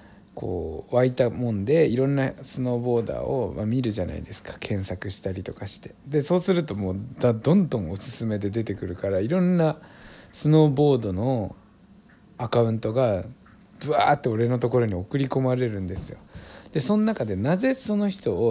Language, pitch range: Japanese, 105-155 Hz